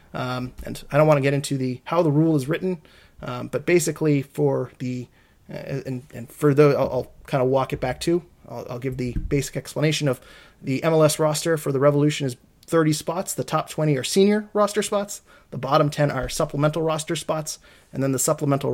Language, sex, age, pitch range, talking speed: English, male, 30-49, 130-155 Hz, 210 wpm